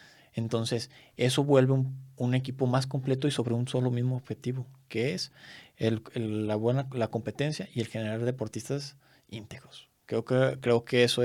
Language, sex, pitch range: Spanish, male, 120-140 Hz